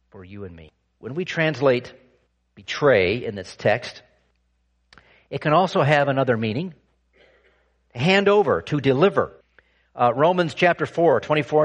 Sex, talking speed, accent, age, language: male, 135 wpm, American, 50-69, English